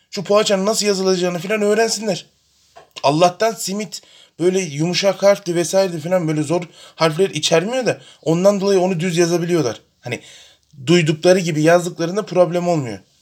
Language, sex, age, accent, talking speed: Turkish, male, 30-49, native, 130 wpm